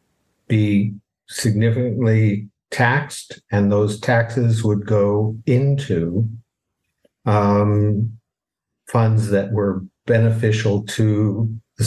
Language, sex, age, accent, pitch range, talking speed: English, male, 60-79, American, 100-110 Hz, 80 wpm